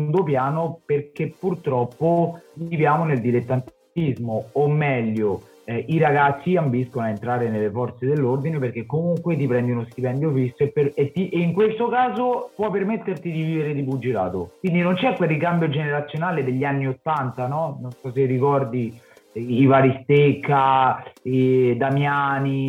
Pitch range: 130-155 Hz